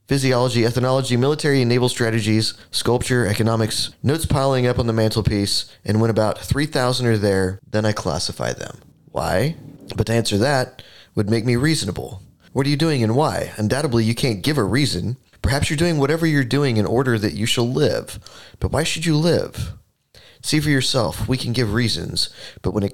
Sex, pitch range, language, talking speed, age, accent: male, 105-135 Hz, English, 190 wpm, 30-49, American